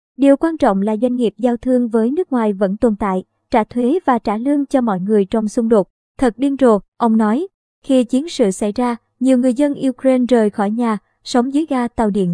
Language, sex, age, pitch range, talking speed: Vietnamese, male, 20-39, 215-265 Hz, 230 wpm